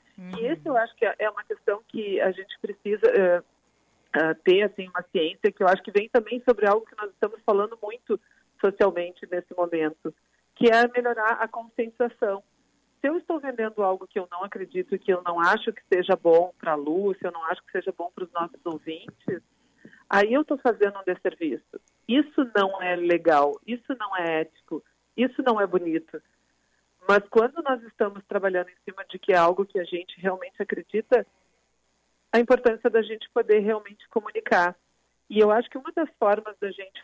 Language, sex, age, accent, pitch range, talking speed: Portuguese, female, 40-59, Brazilian, 180-235 Hz, 190 wpm